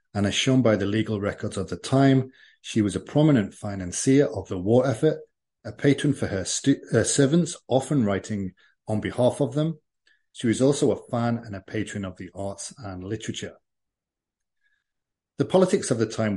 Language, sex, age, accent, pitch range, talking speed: English, male, 40-59, British, 100-135 Hz, 180 wpm